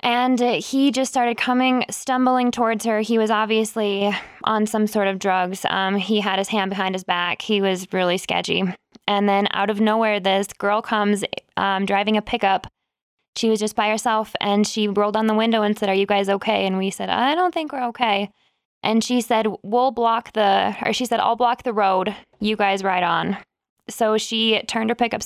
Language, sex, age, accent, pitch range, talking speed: English, female, 20-39, American, 195-230 Hz, 205 wpm